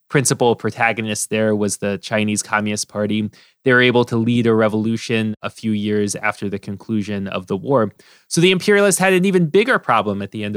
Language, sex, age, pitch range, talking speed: English, male, 20-39, 105-145 Hz, 200 wpm